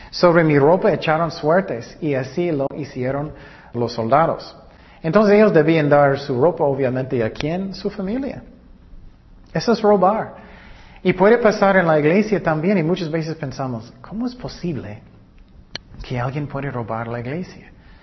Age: 40-59